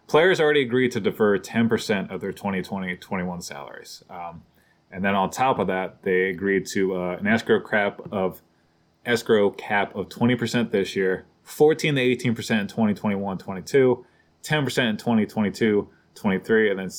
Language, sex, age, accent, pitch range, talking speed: English, male, 20-39, American, 90-120 Hz, 140 wpm